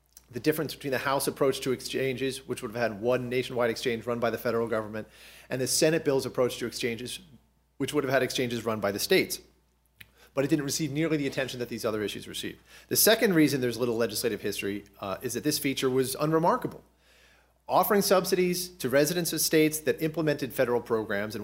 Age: 40-59